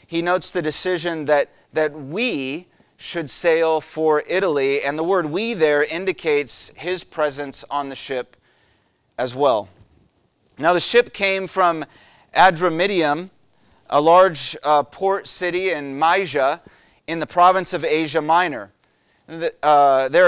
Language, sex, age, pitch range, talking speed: English, male, 30-49, 150-185 Hz, 135 wpm